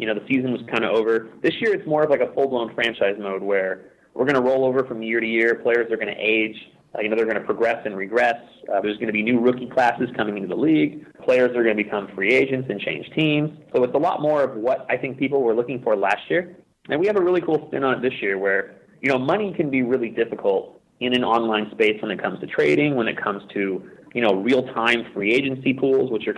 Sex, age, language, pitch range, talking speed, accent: male, 30-49, English, 110-140 Hz, 270 wpm, American